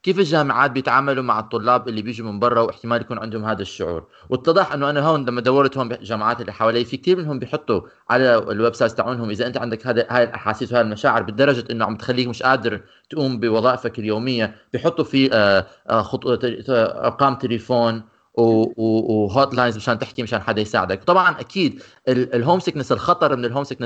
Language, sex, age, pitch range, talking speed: Arabic, male, 30-49, 120-145 Hz, 165 wpm